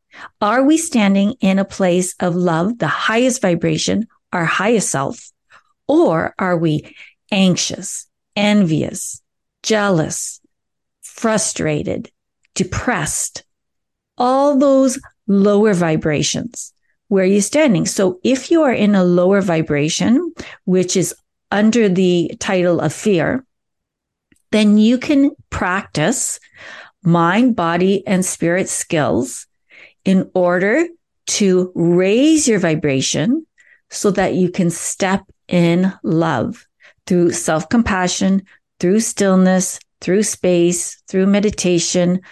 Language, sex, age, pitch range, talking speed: English, female, 40-59, 180-225 Hz, 105 wpm